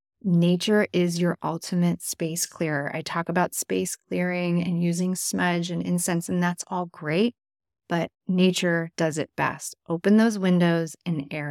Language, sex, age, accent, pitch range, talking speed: English, female, 30-49, American, 160-185 Hz, 155 wpm